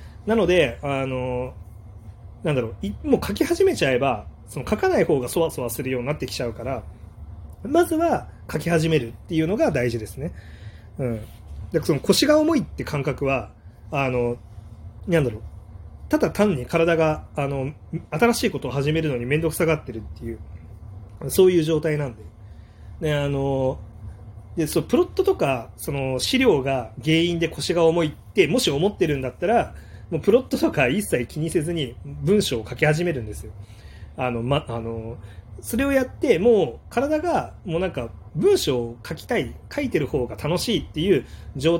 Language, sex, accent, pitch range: Japanese, male, native, 105-165 Hz